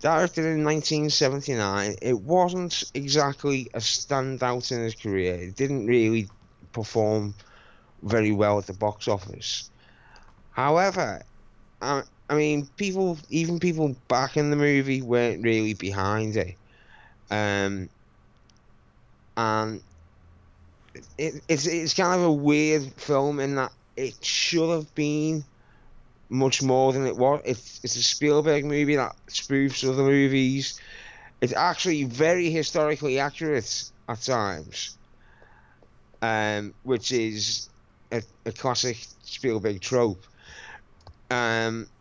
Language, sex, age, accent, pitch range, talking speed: English, male, 20-39, British, 110-150 Hz, 115 wpm